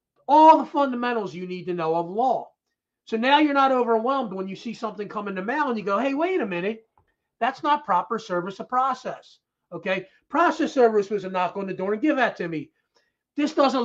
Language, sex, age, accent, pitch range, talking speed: English, male, 40-59, American, 190-270 Hz, 220 wpm